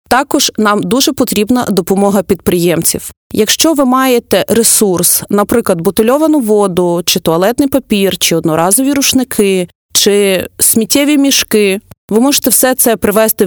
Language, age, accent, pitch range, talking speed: Ukrainian, 30-49, native, 195-250 Hz, 120 wpm